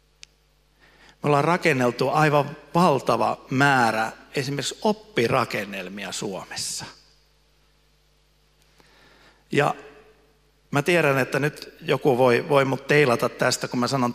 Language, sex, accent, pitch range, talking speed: Finnish, male, native, 120-150 Hz, 100 wpm